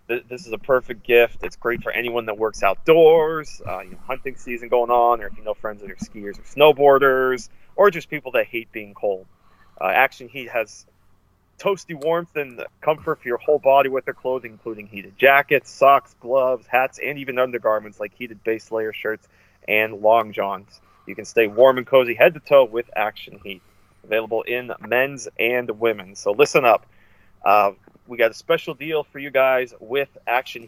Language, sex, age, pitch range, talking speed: English, male, 30-49, 110-135 Hz, 195 wpm